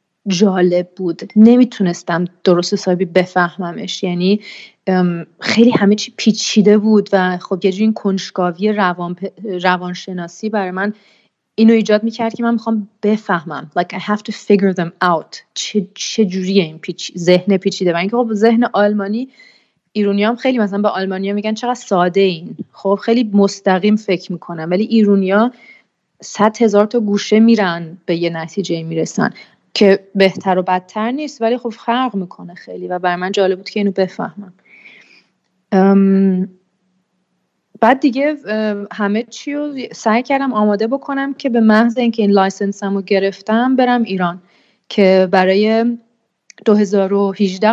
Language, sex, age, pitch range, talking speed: Persian, female, 30-49, 185-220 Hz, 140 wpm